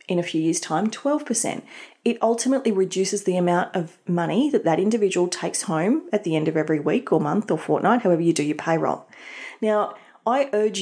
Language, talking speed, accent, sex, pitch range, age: English, 200 wpm, Australian, female, 170-220 Hz, 30-49